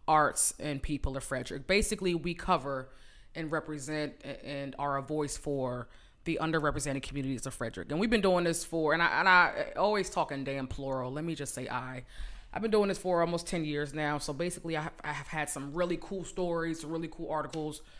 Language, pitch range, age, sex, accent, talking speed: English, 145-190 Hz, 20-39, female, American, 205 wpm